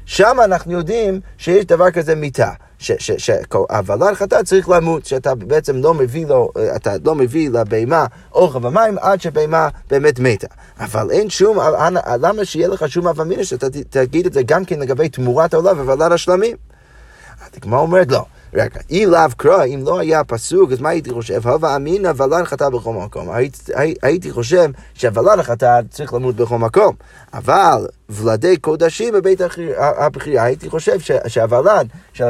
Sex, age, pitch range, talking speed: male, 30-49, 130-205 Hz, 150 wpm